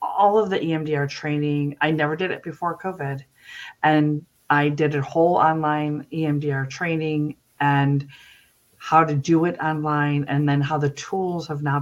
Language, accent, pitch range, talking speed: English, American, 140-160 Hz, 165 wpm